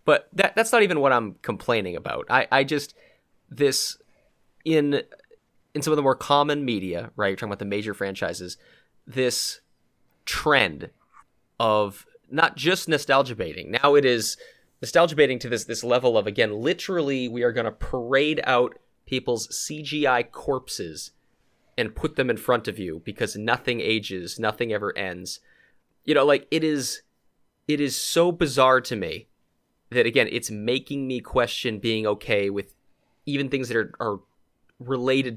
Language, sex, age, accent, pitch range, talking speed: English, male, 30-49, American, 115-155 Hz, 160 wpm